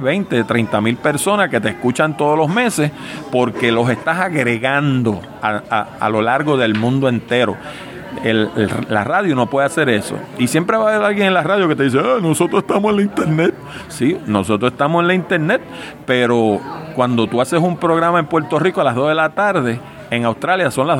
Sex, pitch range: male, 115-170 Hz